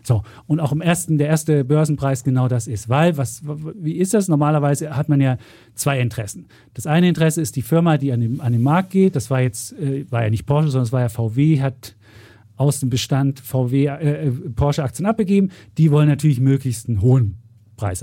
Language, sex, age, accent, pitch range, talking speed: German, male, 40-59, German, 125-160 Hz, 210 wpm